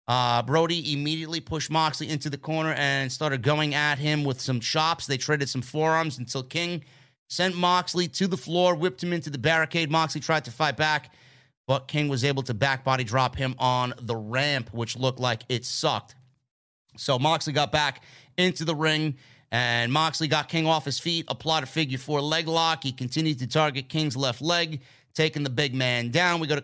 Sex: male